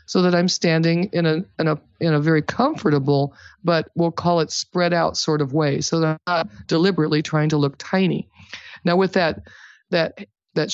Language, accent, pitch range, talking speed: English, American, 150-175 Hz, 195 wpm